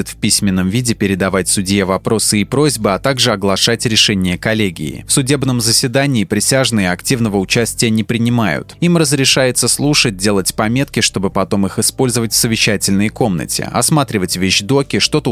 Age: 20-39